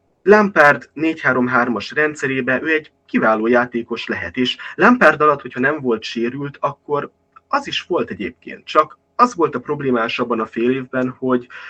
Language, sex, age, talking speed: Hungarian, male, 20-39, 155 wpm